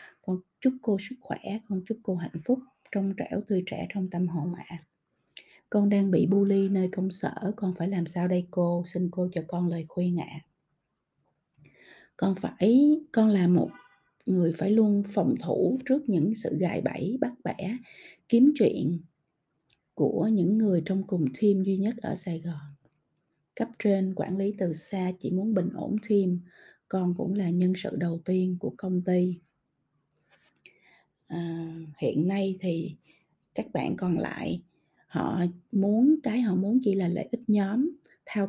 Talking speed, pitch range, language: 170 wpm, 175-210 Hz, Vietnamese